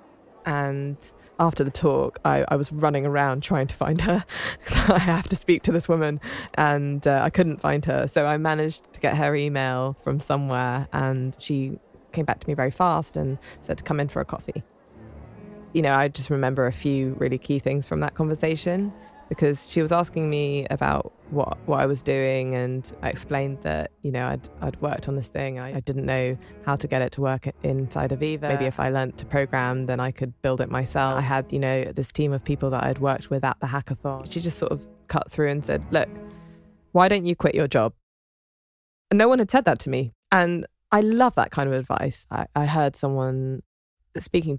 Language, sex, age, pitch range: English, female, 20-39, 130-155 Hz